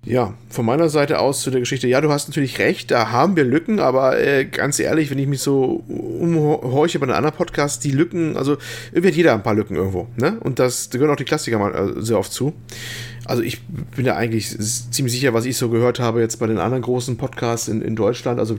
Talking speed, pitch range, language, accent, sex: 240 wpm, 115-145 Hz, German, German, male